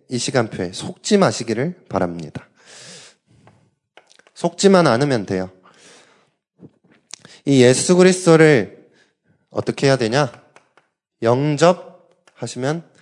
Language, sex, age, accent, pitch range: Korean, male, 20-39, native, 105-165 Hz